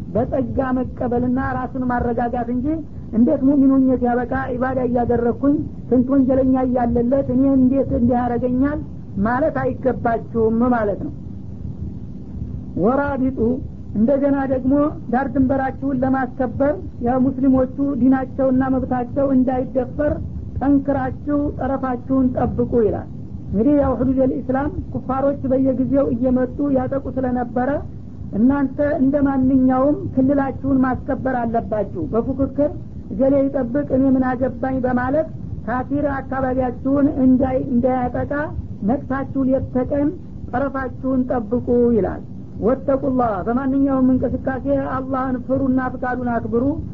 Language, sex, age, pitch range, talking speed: Amharic, female, 50-69, 245-270 Hz, 95 wpm